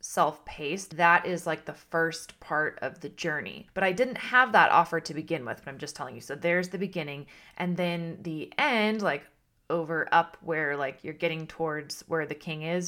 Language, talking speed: English, 205 wpm